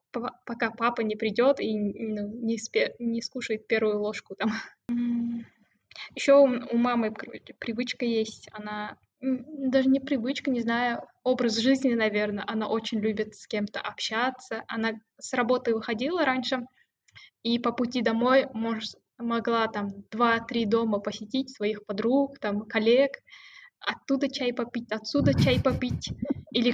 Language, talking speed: Russian, 140 wpm